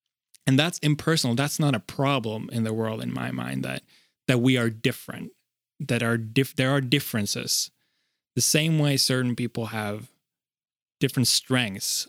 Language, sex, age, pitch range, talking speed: English, male, 20-39, 115-140 Hz, 160 wpm